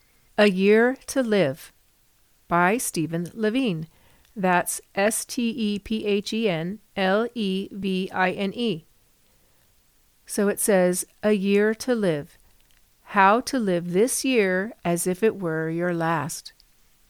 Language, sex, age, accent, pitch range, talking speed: English, female, 50-69, American, 175-215 Hz, 95 wpm